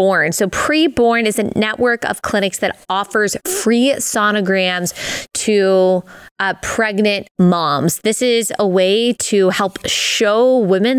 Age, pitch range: 20-39, 190-235 Hz